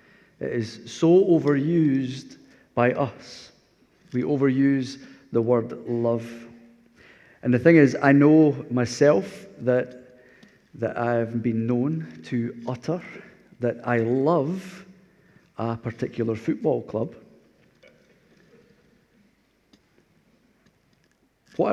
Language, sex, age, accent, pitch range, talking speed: English, male, 50-69, British, 120-140 Hz, 90 wpm